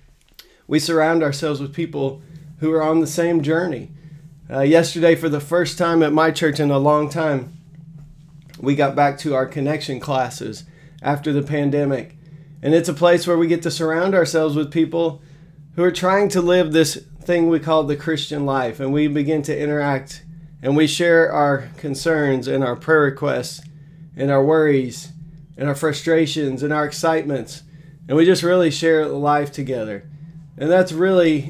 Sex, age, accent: male, 30-49, American